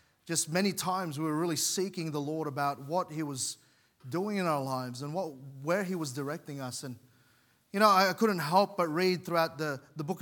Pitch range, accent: 150-195 Hz, Australian